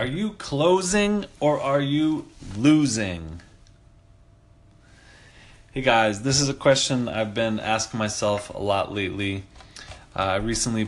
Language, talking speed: English, 125 wpm